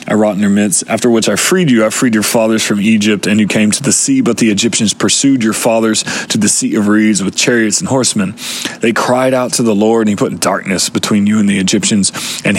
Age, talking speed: 30-49, 255 wpm